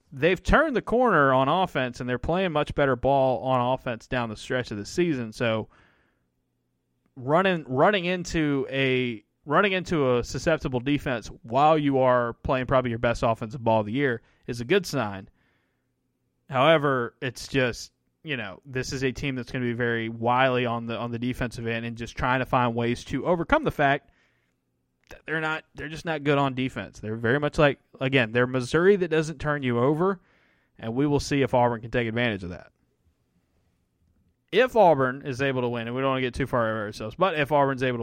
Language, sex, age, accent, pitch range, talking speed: English, male, 20-39, American, 115-140 Hz, 200 wpm